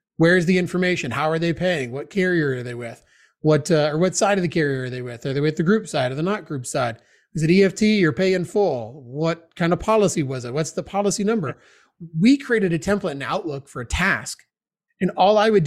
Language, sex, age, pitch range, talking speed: English, male, 30-49, 145-190 Hz, 245 wpm